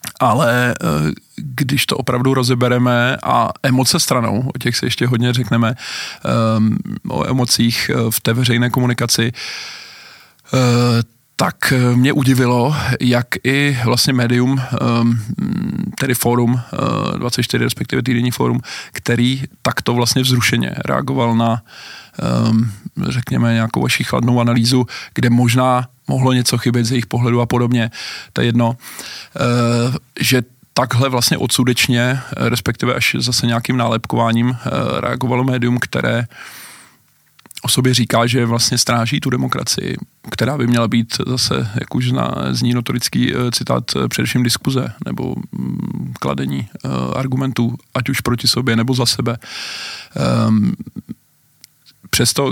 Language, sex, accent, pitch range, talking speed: Czech, male, native, 115-130 Hz, 120 wpm